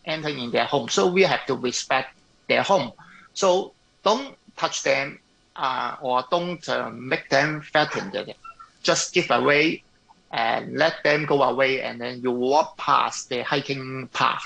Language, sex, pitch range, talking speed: English, male, 125-155 Hz, 160 wpm